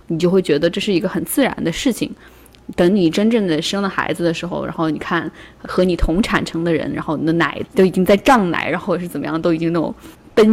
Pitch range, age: 165-205 Hz, 20-39